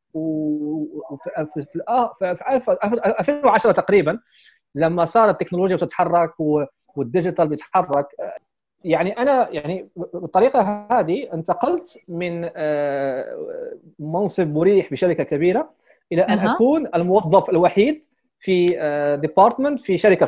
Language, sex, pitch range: Arabic, male, 155-215 Hz